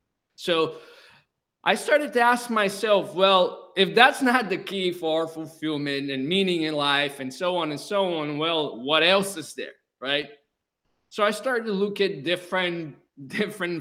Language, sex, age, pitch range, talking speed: English, male, 20-39, 155-200 Hz, 165 wpm